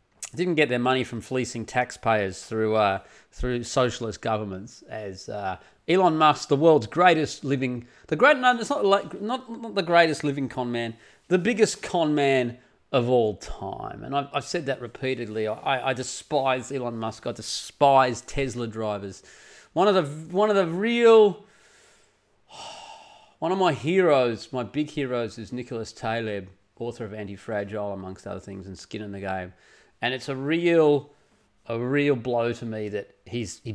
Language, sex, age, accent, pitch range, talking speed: English, male, 30-49, Australian, 110-160 Hz, 170 wpm